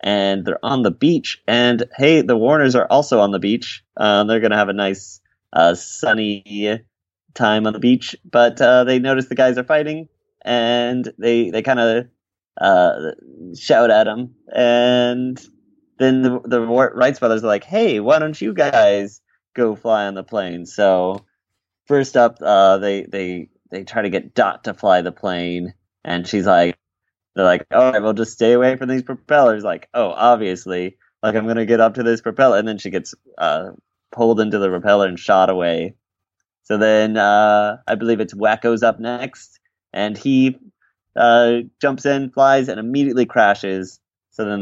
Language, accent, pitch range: English, American, 100-125 Hz